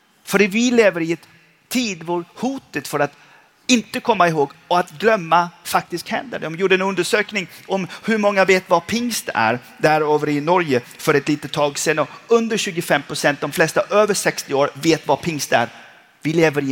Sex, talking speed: male, 195 wpm